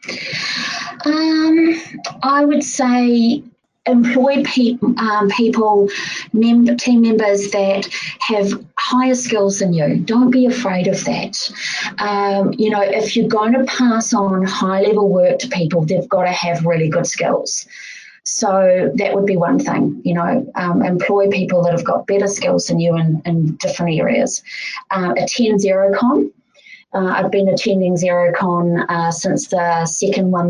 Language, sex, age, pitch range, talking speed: English, female, 20-39, 185-240 Hz, 150 wpm